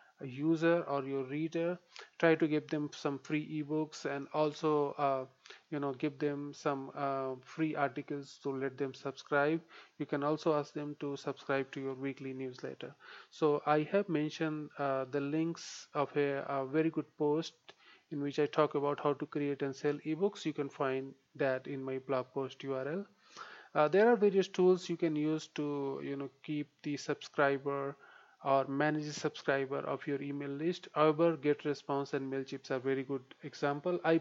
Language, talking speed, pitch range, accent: English, 180 wpm, 140-155 Hz, Indian